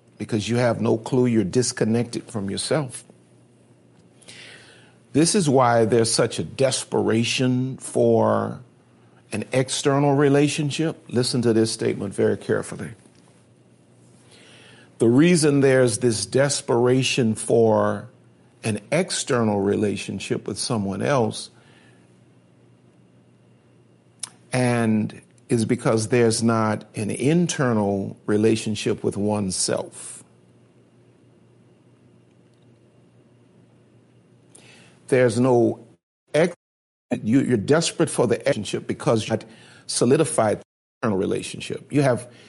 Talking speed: 90 wpm